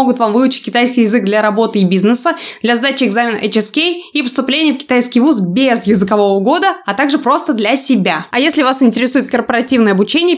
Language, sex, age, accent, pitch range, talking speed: Russian, female, 20-39, native, 225-280 Hz, 185 wpm